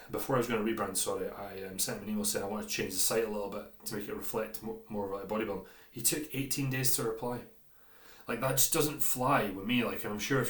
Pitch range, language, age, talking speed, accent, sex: 100-120 Hz, English, 30-49, 270 wpm, British, male